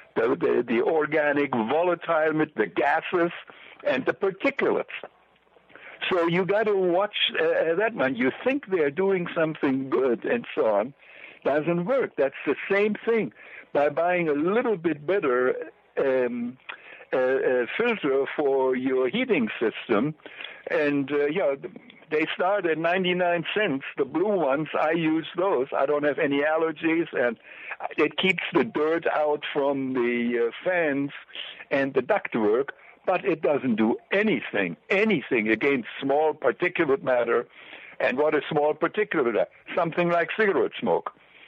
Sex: male